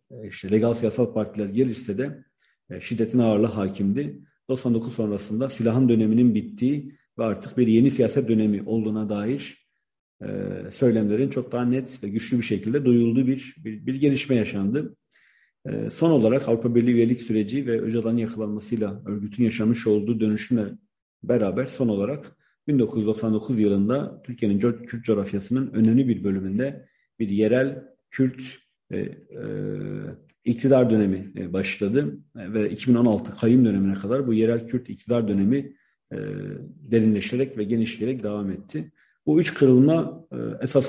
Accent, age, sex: native, 50-69, male